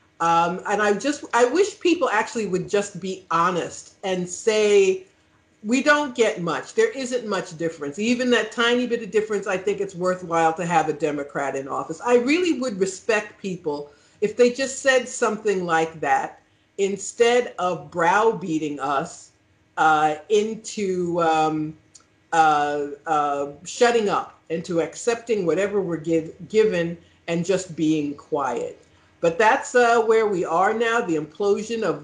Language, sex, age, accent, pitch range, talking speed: English, female, 50-69, American, 160-220 Hz, 150 wpm